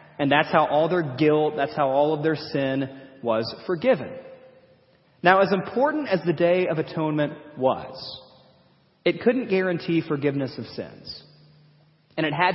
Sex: male